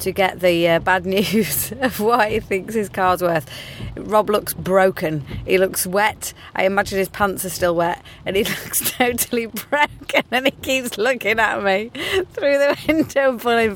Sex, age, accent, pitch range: female, 30-49, British, 155-220 Hz